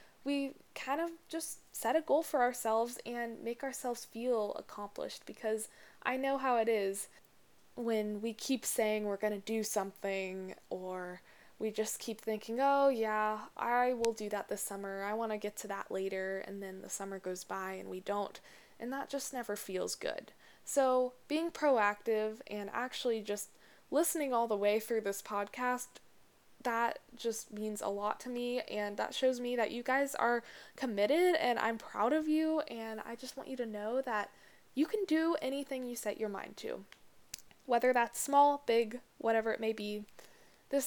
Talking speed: 180 wpm